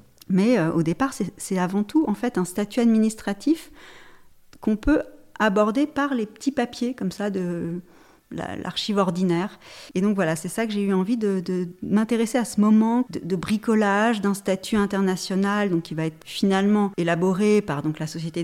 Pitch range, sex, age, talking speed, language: 175-215 Hz, female, 40-59, 190 wpm, French